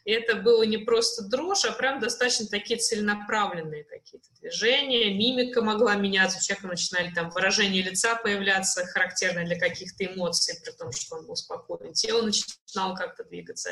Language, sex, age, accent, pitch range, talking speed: Russian, female, 20-39, native, 190-245 Hz, 160 wpm